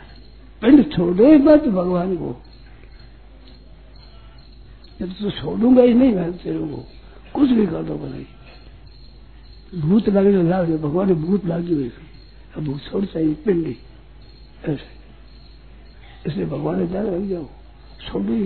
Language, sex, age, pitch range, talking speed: Hindi, male, 60-79, 165-215 Hz, 95 wpm